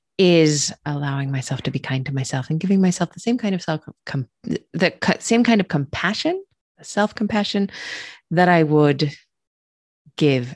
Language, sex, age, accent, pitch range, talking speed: English, female, 30-49, American, 140-200 Hz, 155 wpm